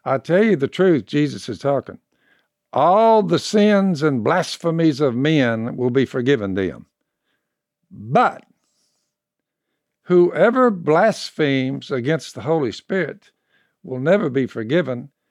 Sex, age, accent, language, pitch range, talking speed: male, 60-79, American, English, 130-170 Hz, 120 wpm